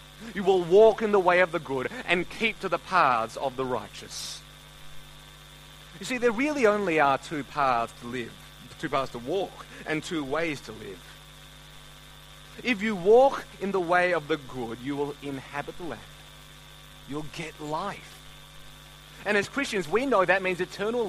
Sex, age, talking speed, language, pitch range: male, 30-49, 175 wpm, English, 140-190 Hz